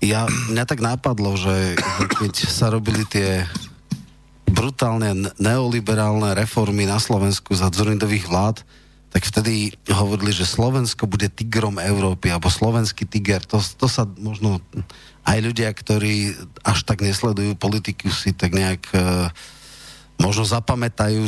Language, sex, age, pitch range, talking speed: Slovak, male, 40-59, 95-115 Hz, 125 wpm